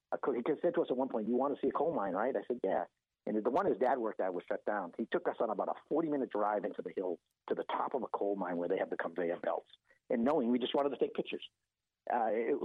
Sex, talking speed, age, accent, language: male, 295 wpm, 50-69, American, English